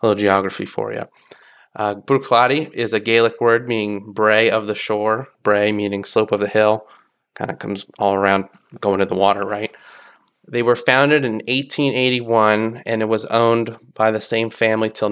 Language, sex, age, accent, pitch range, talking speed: English, male, 20-39, American, 105-115 Hz, 185 wpm